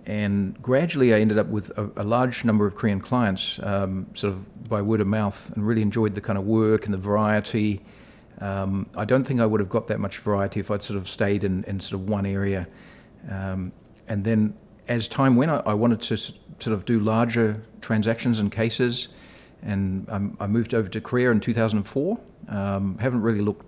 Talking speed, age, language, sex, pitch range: 210 wpm, 50-69, English, male, 100-115 Hz